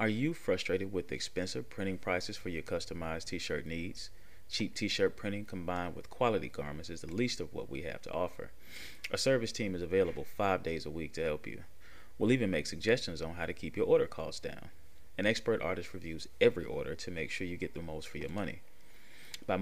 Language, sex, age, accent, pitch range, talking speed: English, male, 30-49, American, 85-110 Hz, 210 wpm